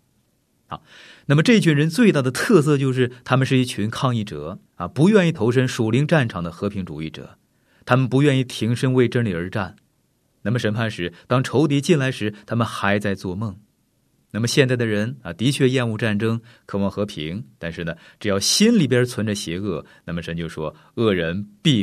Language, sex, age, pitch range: Chinese, male, 30-49, 90-130 Hz